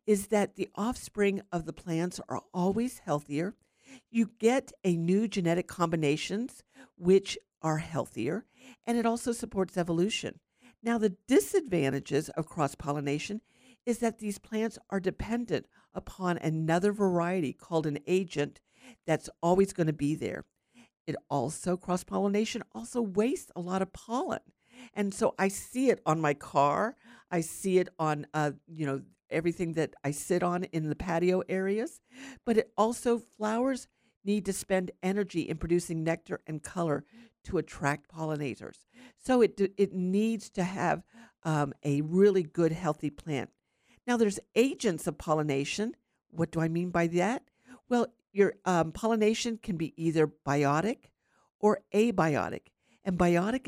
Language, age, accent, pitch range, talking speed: English, 50-69, American, 160-225 Hz, 150 wpm